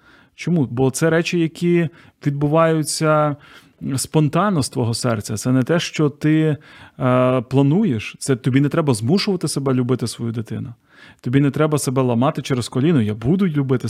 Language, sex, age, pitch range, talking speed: Ukrainian, male, 30-49, 130-170 Hz, 155 wpm